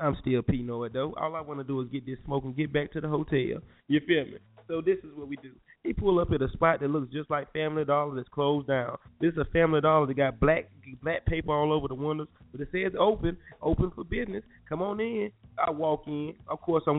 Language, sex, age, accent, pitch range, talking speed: English, male, 20-39, American, 130-165 Hz, 260 wpm